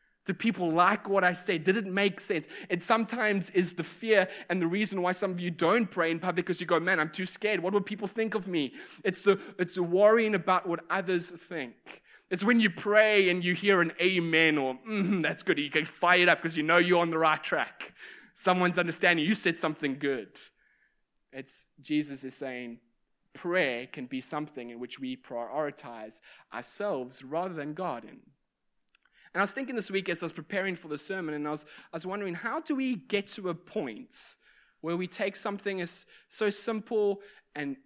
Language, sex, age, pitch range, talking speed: English, male, 20-39, 155-200 Hz, 205 wpm